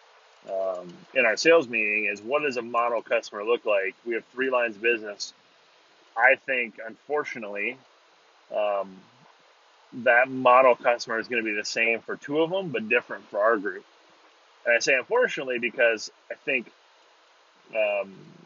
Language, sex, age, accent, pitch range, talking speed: English, male, 30-49, American, 105-135 Hz, 160 wpm